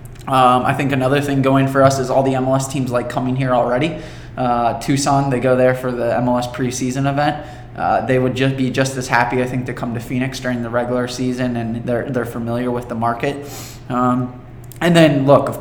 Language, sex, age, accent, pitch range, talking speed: English, male, 20-39, American, 120-135 Hz, 220 wpm